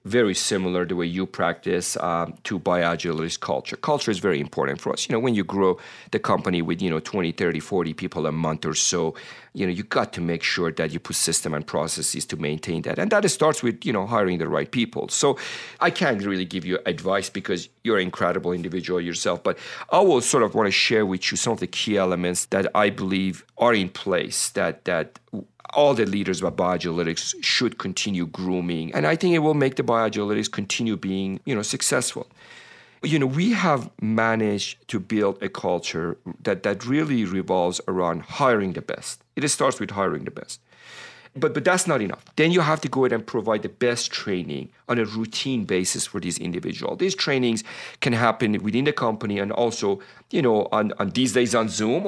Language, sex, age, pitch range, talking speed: English, male, 40-59, 95-130 Hz, 205 wpm